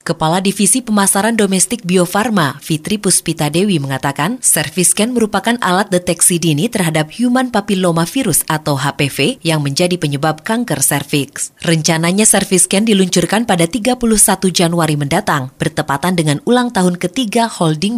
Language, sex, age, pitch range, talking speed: Indonesian, female, 20-39, 150-185 Hz, 135 wpm